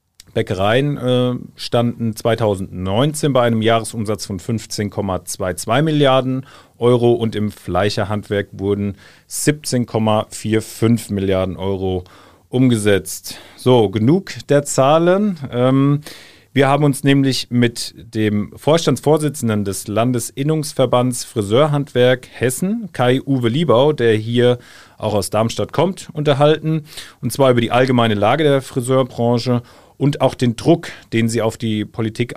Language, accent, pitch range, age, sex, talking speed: German, German, 105-130 Hz, 40-59, male, 115 wpm